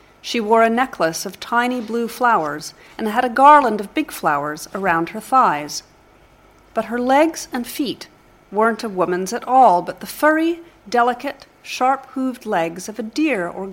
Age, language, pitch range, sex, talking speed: 40-59, English, 190-275 Hz, female, 165 wpm